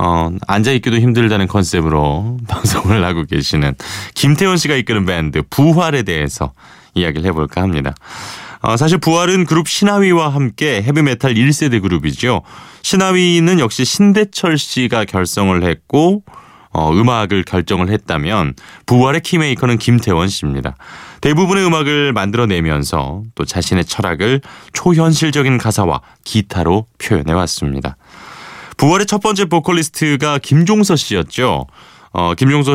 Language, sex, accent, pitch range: Korean, male, native, 90-150 Hz